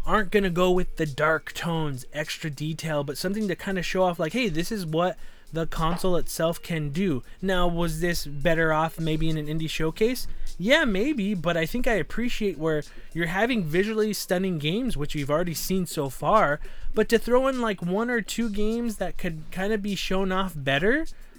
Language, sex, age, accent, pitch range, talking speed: English, male, 20-39, American, 155-200 Hz, 200 wpm